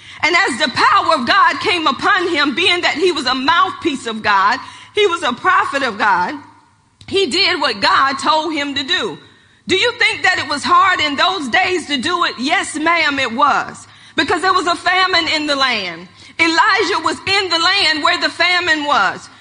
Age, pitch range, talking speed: 40-59, 290-375 Hz, 200 wpm